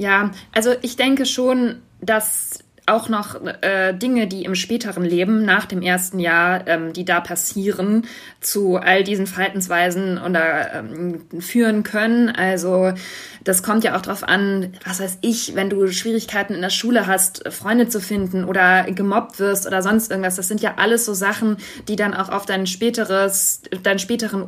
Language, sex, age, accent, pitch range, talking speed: German, female, 20-39, German, 180-210 Hz, 170 wpm